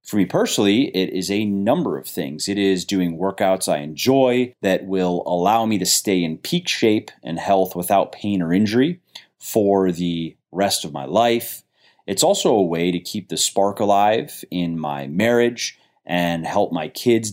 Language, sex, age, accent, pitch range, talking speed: English, male, 30-49, American, 85-105 Hz, 180 wpm